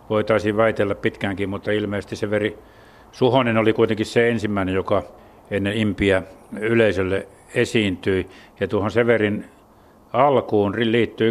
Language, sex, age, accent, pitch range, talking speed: Finnish, male, 50-69, native, 100-115 Hz, 110 wpm